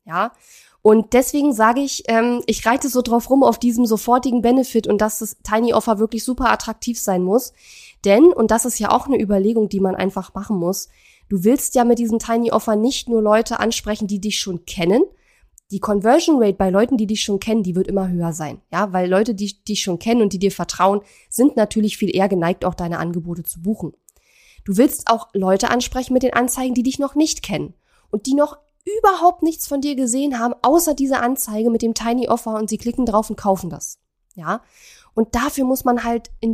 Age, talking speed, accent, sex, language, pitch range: 20-39, 215 wpm, German, female, German, 200-245 Hz